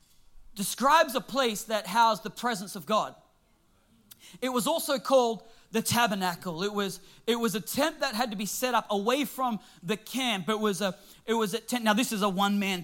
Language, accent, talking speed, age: English, Australian, 200 wpm, 30-49